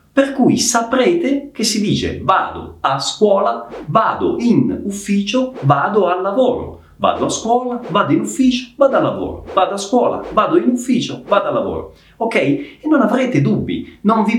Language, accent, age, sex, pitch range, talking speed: Italian, native, 40-59, male, 140-235 Hz, 165 wpm